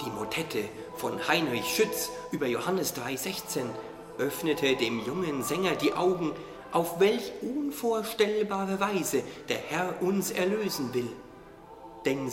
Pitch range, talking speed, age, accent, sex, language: 165-220 Hz, 115 wpm, 40-59, German, male, German